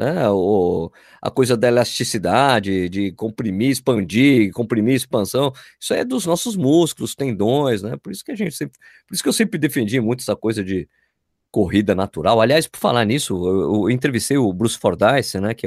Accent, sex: Brazilian, male